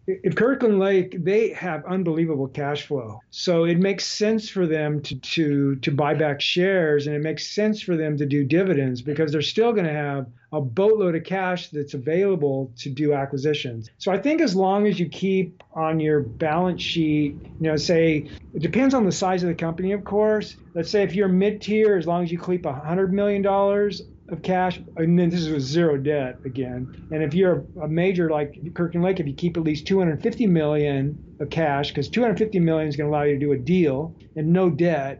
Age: 50-69